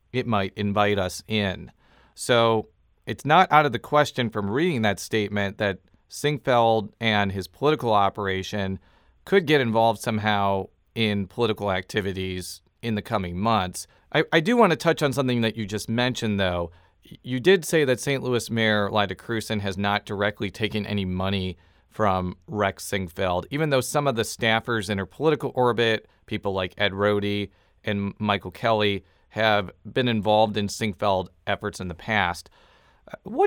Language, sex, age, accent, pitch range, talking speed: English, male, 40-59, American, 95-115 Hz, 165 wpm